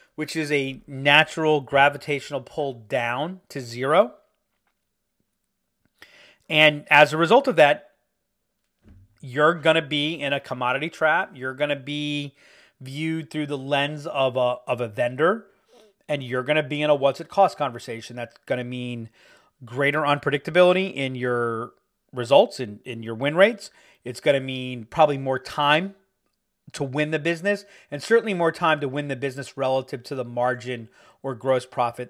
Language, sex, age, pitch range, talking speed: English, male, 30-49, 130-165 Hz, 165 wpm